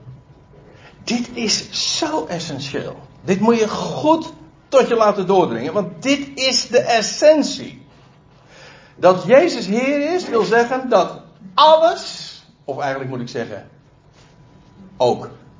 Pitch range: 130-215 Hz